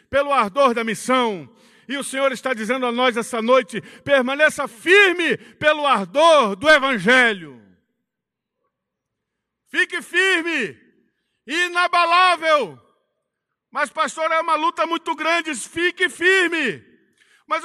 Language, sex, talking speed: Portuguese, male, 110 wpm